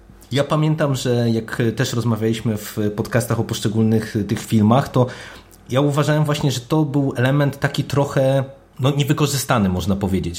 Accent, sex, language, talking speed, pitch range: native, male, Polish, 150 wpm, 115-140 Hz